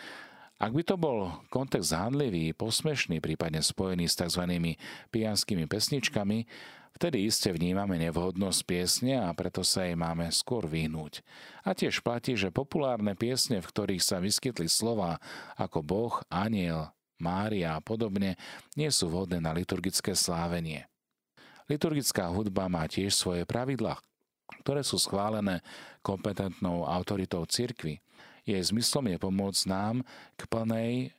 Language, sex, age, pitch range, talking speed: Slovak, male, 40-59, 85-110 Hz, 130 wpm